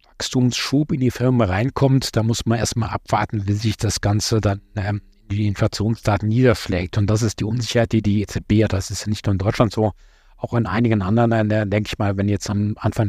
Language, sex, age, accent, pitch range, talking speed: German, male, 50-69, German, 100-115 Hz, 225 wpm